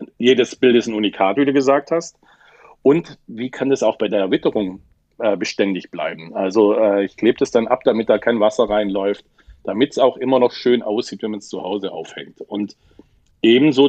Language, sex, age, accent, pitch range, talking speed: German, male, 40-59, German, 105-130 Hz, 205 wpm